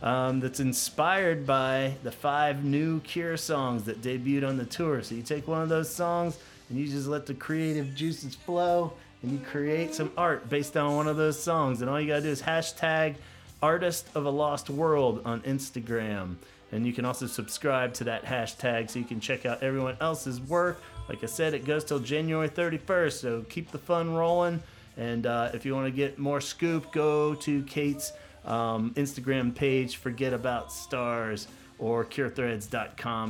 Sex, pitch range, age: male, 115-150 Hz, 30-49